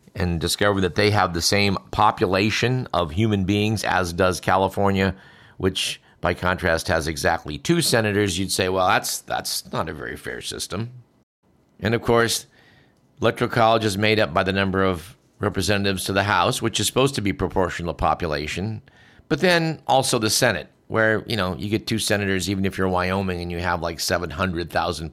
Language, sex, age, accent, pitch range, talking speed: English, male, 50-69, American, 90-115 Hz, 180 wpm